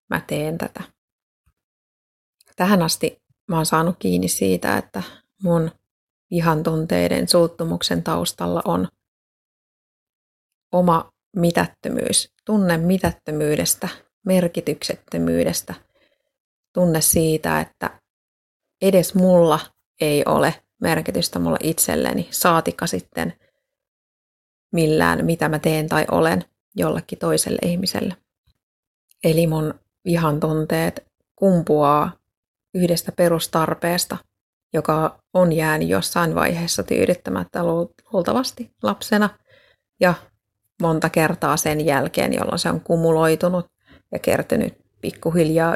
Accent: native